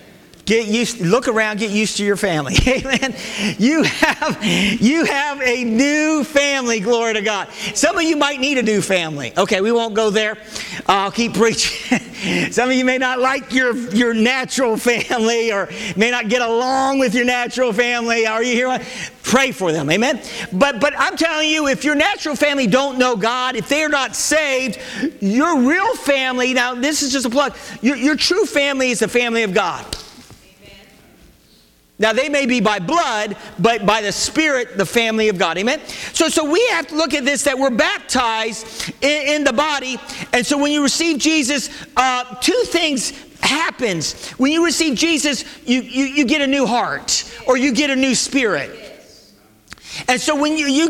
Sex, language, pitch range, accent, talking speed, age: male, English, 225-290 Hz, American, 185 wpm, 50-69